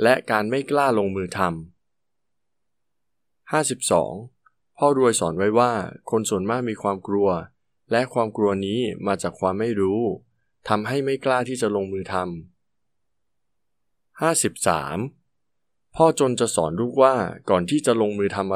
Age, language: 20-39, Thai